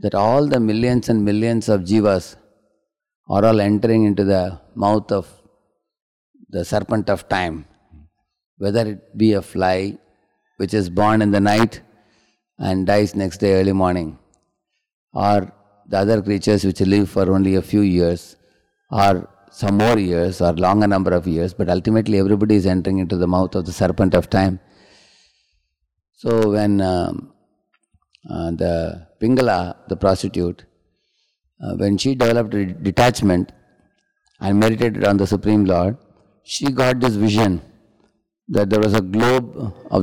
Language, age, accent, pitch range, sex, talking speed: English, 30-49, Indian, 95-115 Hz, male, 150 wpm